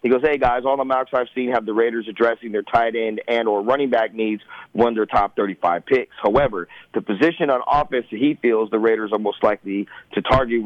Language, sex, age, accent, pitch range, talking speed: English, male, 30-49, American, 105-120 Hz, 235 wpm